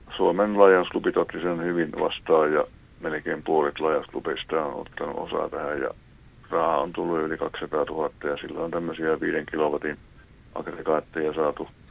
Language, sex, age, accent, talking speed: Finnish, male, 60-79, native, 145 wpm